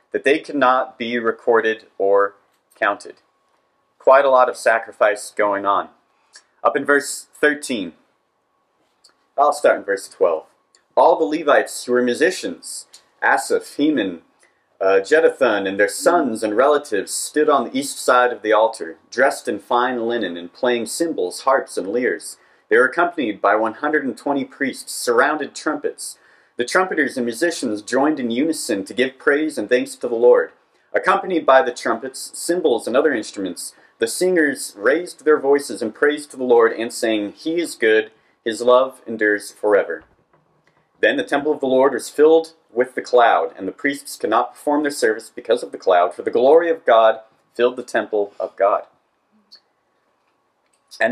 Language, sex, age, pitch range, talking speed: English, male, 40-59, 120-165 Hz, 165 wpm